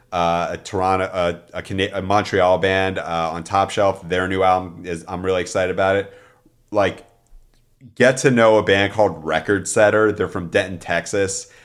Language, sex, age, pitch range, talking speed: English, male, 30-49, 90-110 Hz, 170 wpm